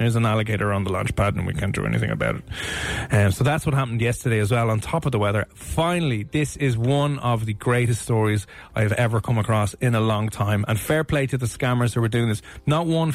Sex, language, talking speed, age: male, English, 250 wpm, 30-49